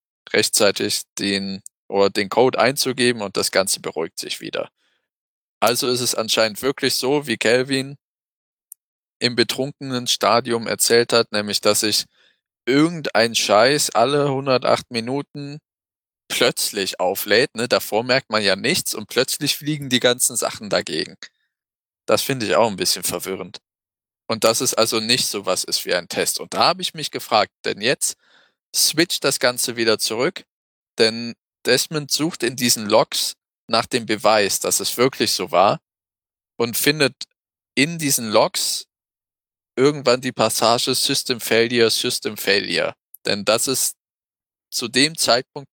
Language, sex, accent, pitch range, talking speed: German, male, German, 110-135 Hz, 145 wpm